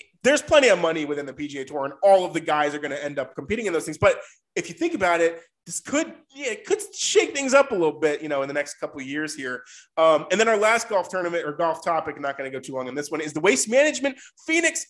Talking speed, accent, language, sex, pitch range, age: 295 wpm, American, English, male, 150-215 Hz, 20-39